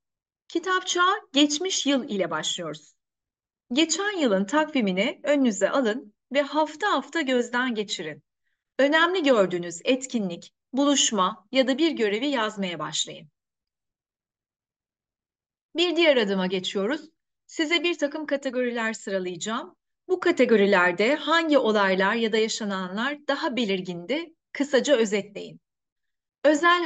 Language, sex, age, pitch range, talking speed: Turkish, female, 30-49, 205-295 Hz, 105 wpm